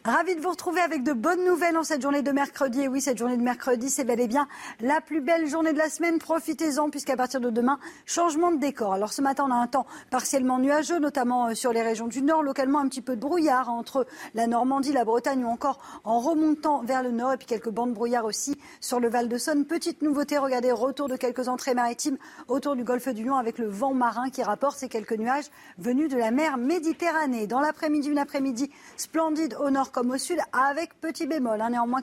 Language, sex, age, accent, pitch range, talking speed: French, female, 40-59, French, 235-290 Hz, 230 wpm